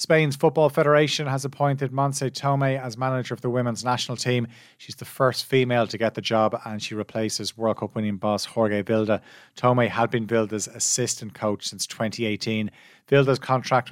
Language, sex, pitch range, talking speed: English, male, 105-125 Hz, 175 wpm